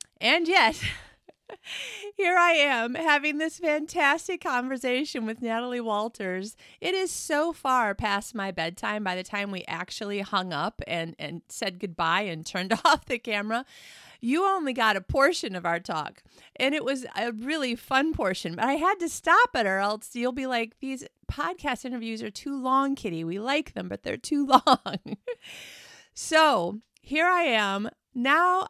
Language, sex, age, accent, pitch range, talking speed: English, female, 30-49, American, 210-300 Hz, 165 wpm